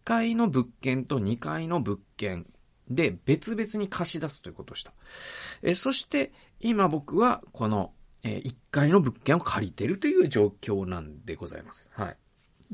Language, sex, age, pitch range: Japanese, male, 40-59, 100-155 Hz